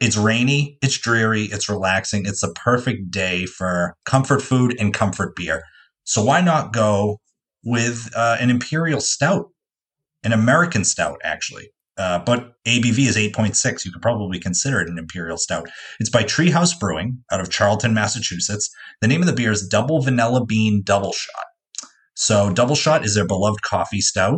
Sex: male